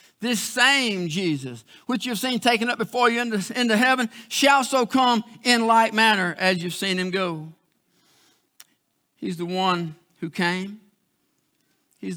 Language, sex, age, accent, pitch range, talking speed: English, male, 50-69, American, 155-210 Hz, 150 wpm